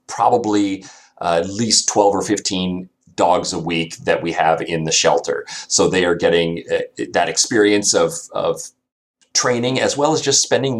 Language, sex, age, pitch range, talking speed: English, male, 30-49, 90-120 Hz, 170 wpm